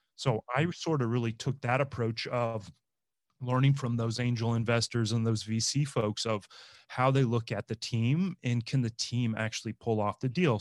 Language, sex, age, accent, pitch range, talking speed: English, male, 30-49, American, 105-130 Hz, 190 wpm